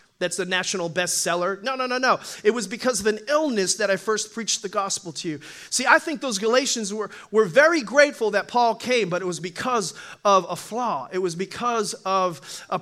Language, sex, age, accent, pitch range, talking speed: English, male, 40-59, American, 195-245 Hz, 215 wpm